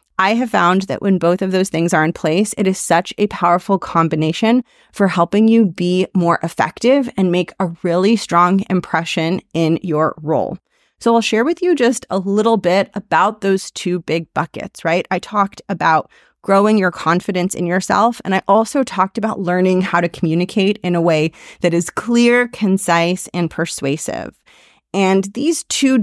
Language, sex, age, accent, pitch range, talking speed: English, female, 30-49, American, 170-205 Hz, 180 wpm